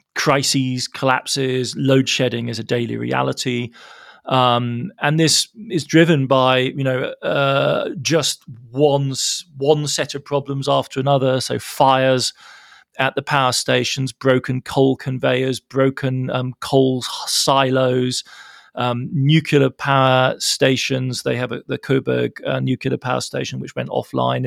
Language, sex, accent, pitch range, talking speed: English, male, British, 125-140 Hz, 130 wpm